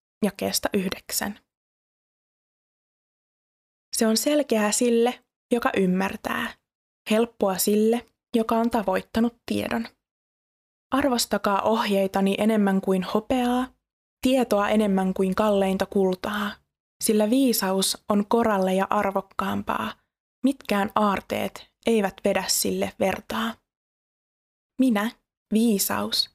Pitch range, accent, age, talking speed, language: 195-230 Hz, native, 20-39, 90 wpm, Finnish